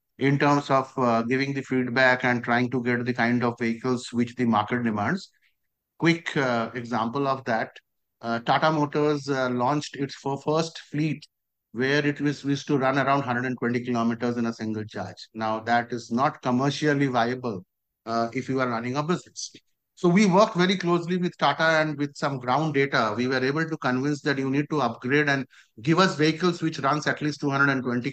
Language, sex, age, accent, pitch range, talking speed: English, male, 50-69, Indian, 130-175 Hz, 190 wpm